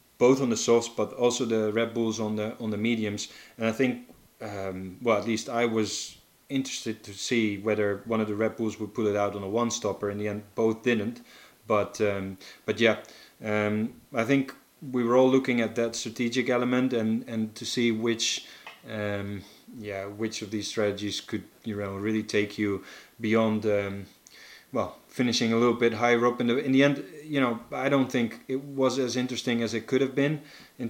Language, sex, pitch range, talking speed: English, male, 105-120 Hz, 205 wpm